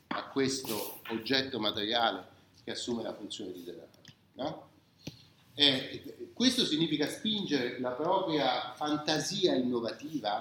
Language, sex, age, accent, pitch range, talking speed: Italian, male, 40-59, native, 125-190 Hz, 100 wpm